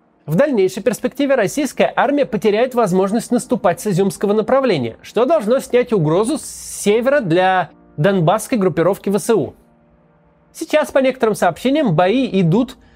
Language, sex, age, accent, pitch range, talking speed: Russian, male, 20-39, native, 180-250 Hz, 125 wpm